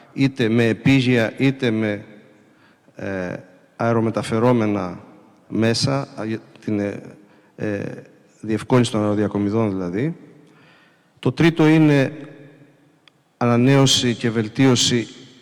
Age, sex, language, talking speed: 50-69, male, Greek, 80 wpm